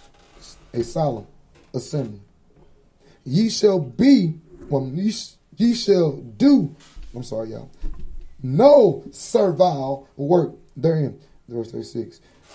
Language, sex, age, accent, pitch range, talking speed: English, male, 30-49, American, 150-215 Hz, 105 wpm